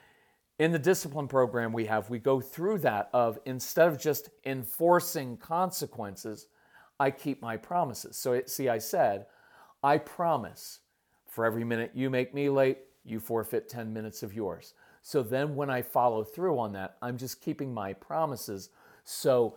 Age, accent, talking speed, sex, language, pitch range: 40-59, American, 165 wpm, male, English, 130-195 Hz